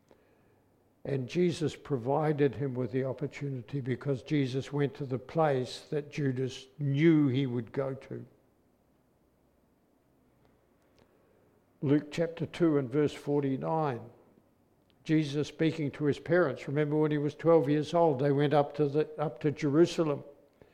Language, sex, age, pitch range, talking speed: English, male, 60-79, 140-165 Hz, 135 wpm